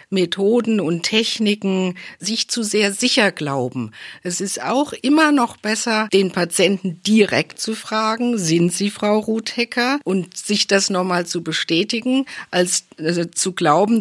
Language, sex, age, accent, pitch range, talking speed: German, female, 50-69, German, 170-210 Hz, 140 wpm